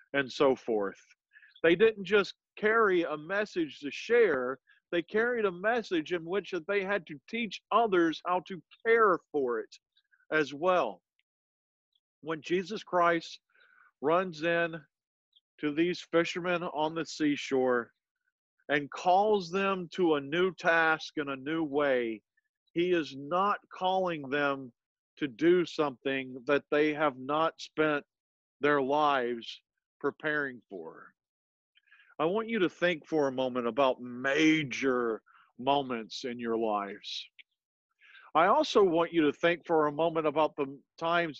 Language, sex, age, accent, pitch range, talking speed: English, male, 50-69, American, 145-195 Hz, 135 wpm